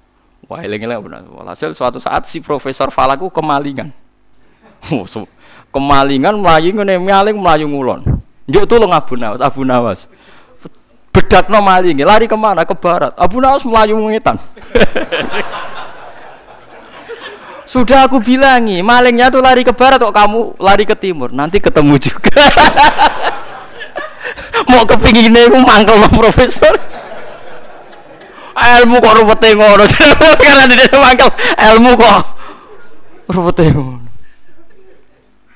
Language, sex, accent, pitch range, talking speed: Indonesian, male, native, 140-230 Hz, 110 wpm